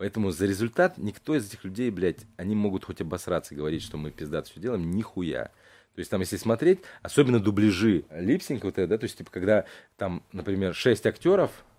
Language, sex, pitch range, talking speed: Russian, male, 85-115 Hz, 195 wpm